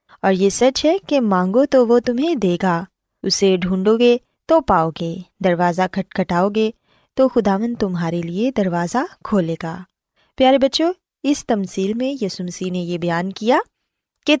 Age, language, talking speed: 20-39, Urdu, 165 wpm